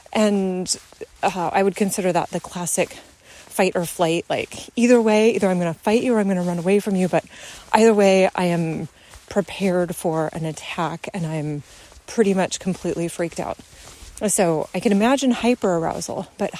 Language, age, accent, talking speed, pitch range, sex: English, 30-49, American, 185 wpm, 180-235 Hz, female